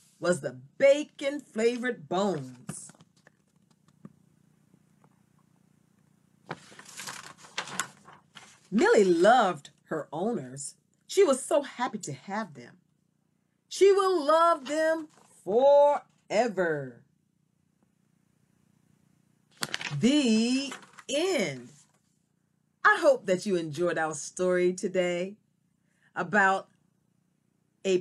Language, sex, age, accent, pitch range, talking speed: English, female, 40-59, American, 175-210 Hz, 70 wpm